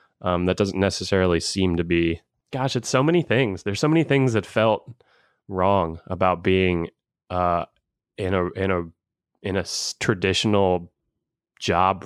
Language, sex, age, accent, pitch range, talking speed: English, male, 20-39, American, 95-120 Hz, 150 wpm